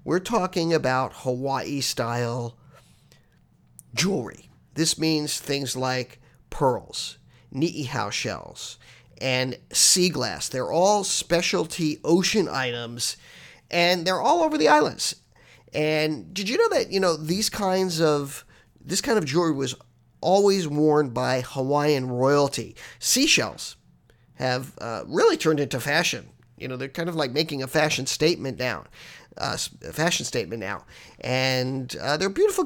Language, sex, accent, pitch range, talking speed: English, male, American, 130-165 Hz, 135 wpm